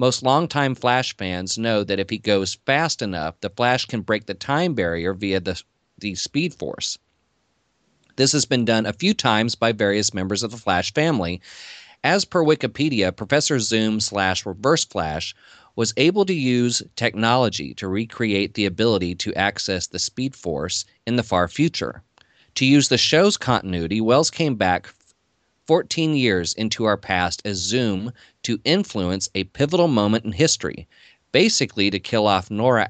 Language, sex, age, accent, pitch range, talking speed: English, male, 30-49, American, 95-125 Hz, 165 wpm